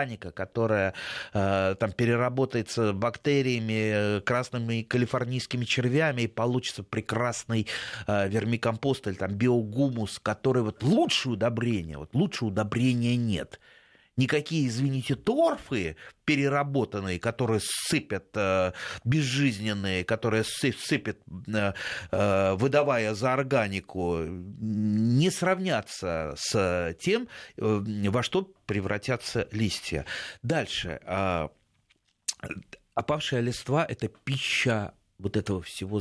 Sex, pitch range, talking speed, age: male, 100-130 Hz, 85 wpm, 30-49